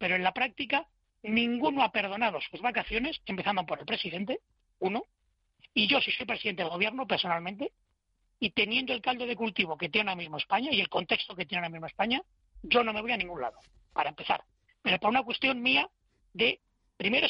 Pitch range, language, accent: 190-260 Hz, Spanish, Spanish